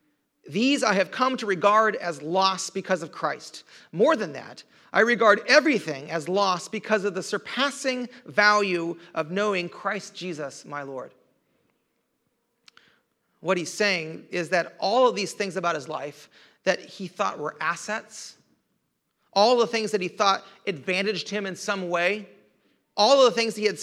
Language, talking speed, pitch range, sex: English, 160 wpm, 175-220 Hz, male